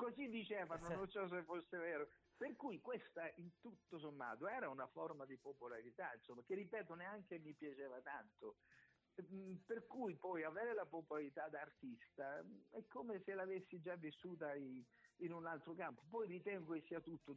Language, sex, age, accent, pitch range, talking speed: Italian, male, 50-69, native, 140-190 Hz, 160 wpm